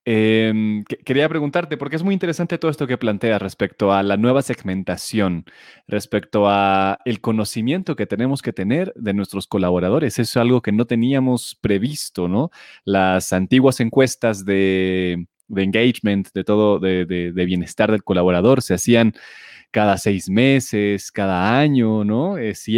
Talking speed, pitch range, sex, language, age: 155 wpm, 100-125 Hz, male, Spanish, 30-49